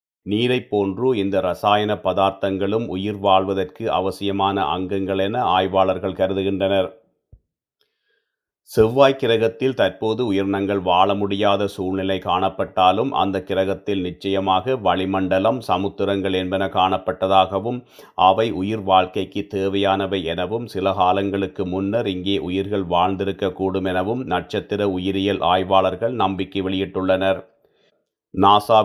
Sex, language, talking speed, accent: male, Tamil, 90 wpm, native